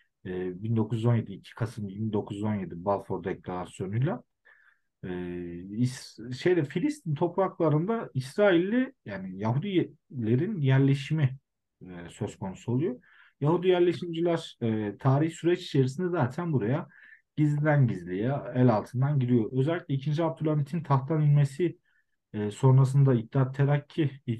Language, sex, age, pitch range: Turkish, male, 40-59, 110-155 Hz